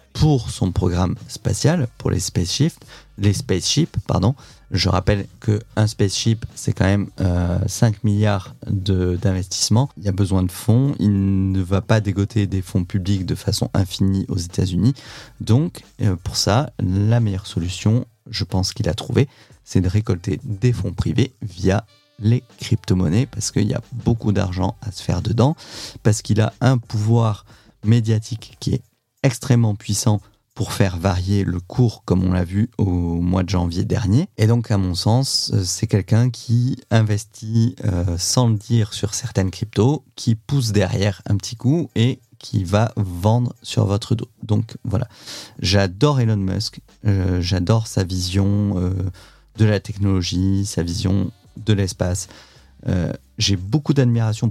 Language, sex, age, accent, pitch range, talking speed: French, male, 30-49, French, 95-120 Hz, 160 wpm